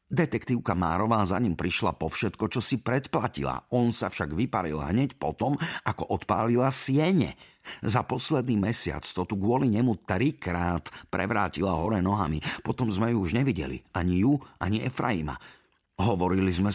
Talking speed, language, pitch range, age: 145 wpm, Slovak, 75-110 Hz, 50-69